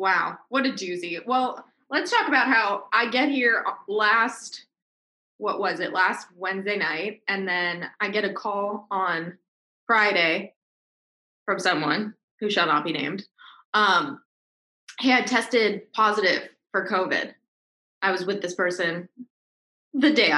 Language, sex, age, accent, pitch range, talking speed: English, female, 20-39, American, 200-260 Hz, 140 wpm